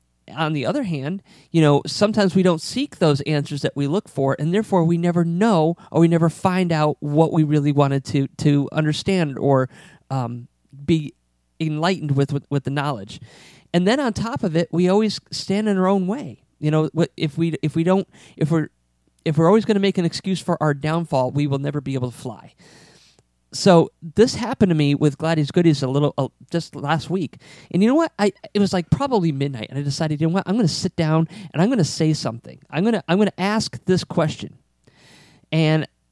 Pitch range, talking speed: 145-185 Hz, 220 wpm